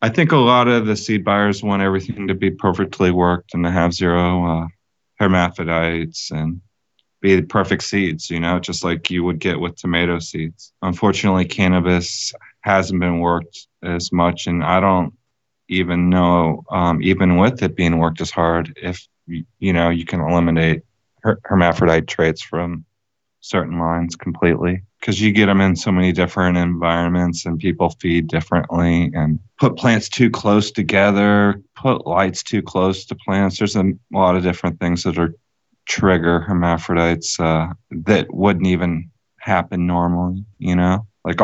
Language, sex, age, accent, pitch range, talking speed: English, male, 20-39, American, 85-95 Hz, 160 wpm